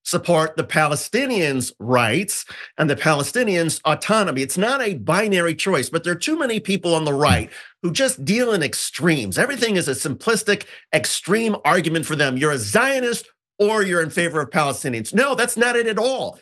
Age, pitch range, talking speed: 50-69, 155-205 Hz, 185 wpm